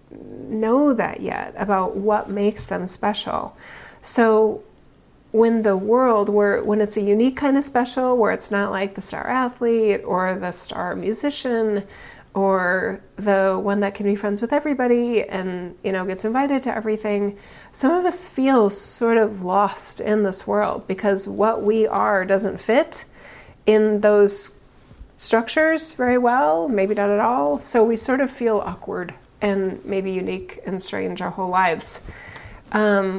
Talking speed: 155 wpm